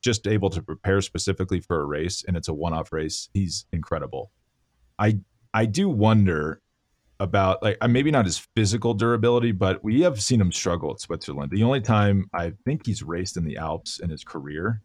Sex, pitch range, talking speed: male, 85-110 Hz, 190 wpm